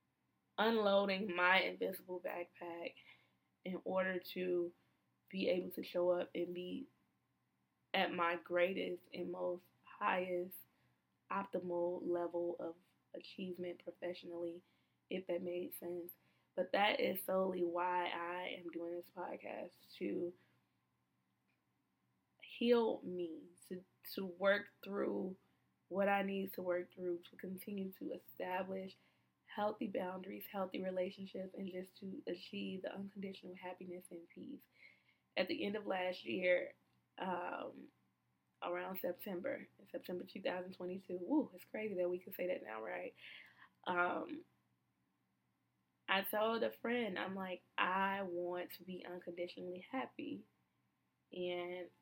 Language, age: English, 20-39